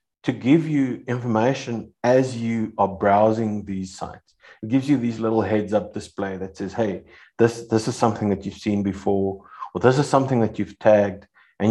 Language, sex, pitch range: English, male, 105-135 Hz